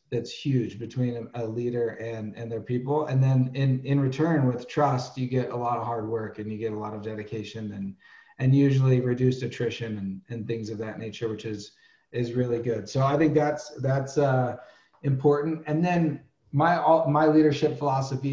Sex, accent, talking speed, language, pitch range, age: male, American, 195 wpm, English, 120-140 Hz, 40-59